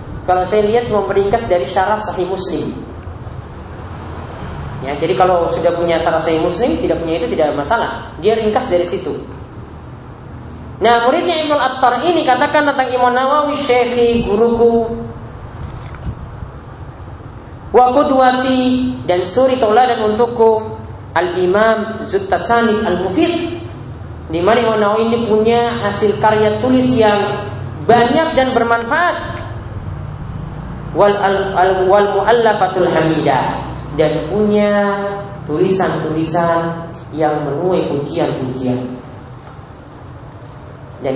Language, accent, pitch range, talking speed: English, Indonesian, 155-225 Hz, 100 wpm